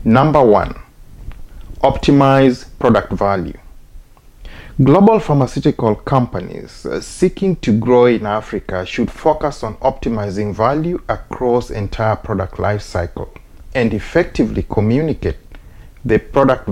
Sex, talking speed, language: male, 100 wpm, English